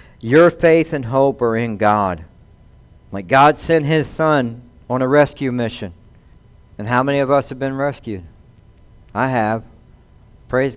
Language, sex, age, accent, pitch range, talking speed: English, male, 60-79, American, 115-155 Hz, 150 wpm